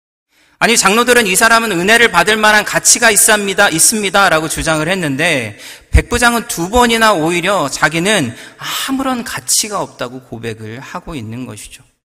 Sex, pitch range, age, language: male, 140-210 Hz, 40-59, Korean